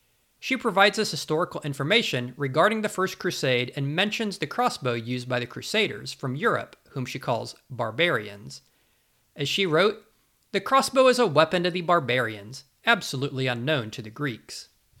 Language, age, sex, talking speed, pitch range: English, 40-59, male, 155 wpm, 125-175 Hz